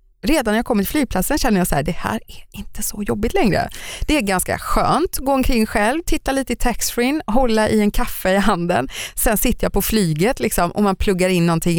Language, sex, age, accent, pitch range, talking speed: Swedish, female, 30-49, native, 180-240 Hz, 235 wpm